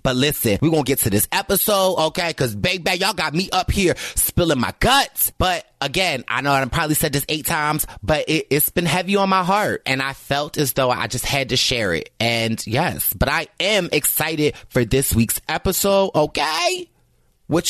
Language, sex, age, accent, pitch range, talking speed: English, male, 30-49, American, 135-205 Hz, 205 wpm